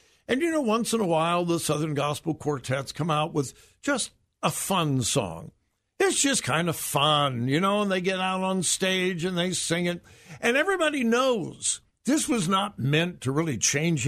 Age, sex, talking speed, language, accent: 60-79, male, 190 wpm, English, American